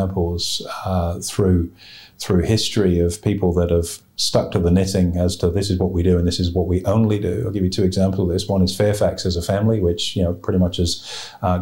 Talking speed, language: 240 wpm, English